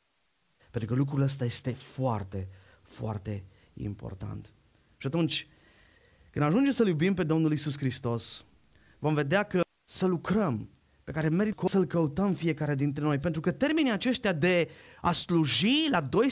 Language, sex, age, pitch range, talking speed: Romanian, male, 20-39, 160-260 Hz, 145 wpm